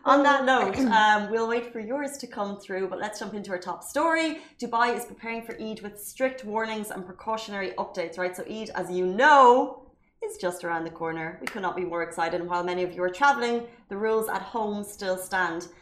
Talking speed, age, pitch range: 225 wpm, 30-49, 180-220 Hz